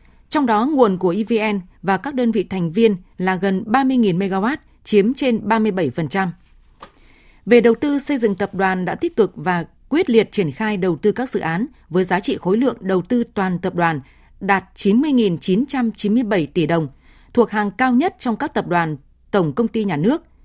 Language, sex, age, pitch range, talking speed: Vietnamese, female, 20-39, 185-235 Hz, 190 wpm